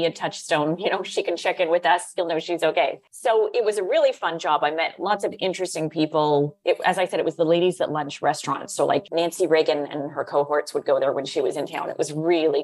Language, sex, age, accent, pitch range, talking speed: English, female, 30-49, American, 160-200 Hz, 265 wpm